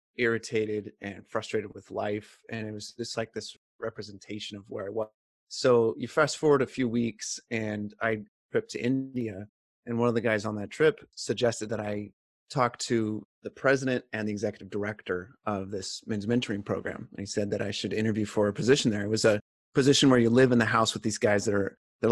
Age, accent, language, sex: 30-49, American, English, male